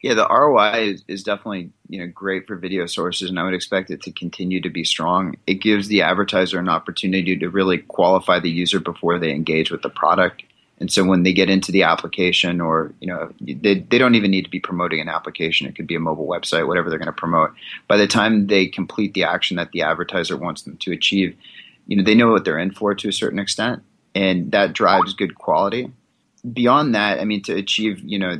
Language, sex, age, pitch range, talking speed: English, male, 30-49, 90-100 Hz, 235 wpm